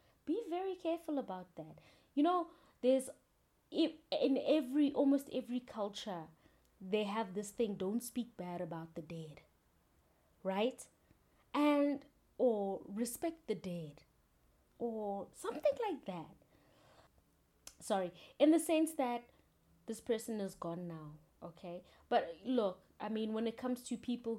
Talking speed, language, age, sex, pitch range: 130 wpm, English, 20-39, female, 180-255 Hz